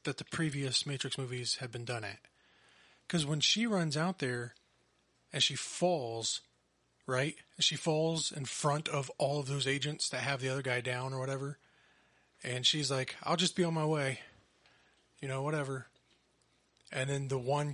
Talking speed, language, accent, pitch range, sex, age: 175 wpm, English, American, 135-170 Hz, male, 30-49